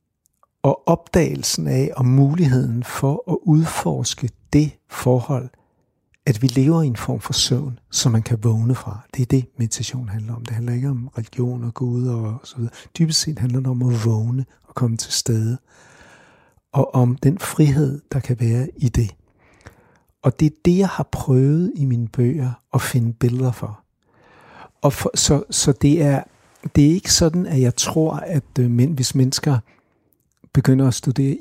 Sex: male